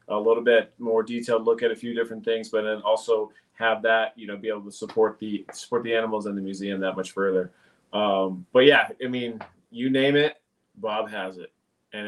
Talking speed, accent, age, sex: 220 wpm, American, 30-49, male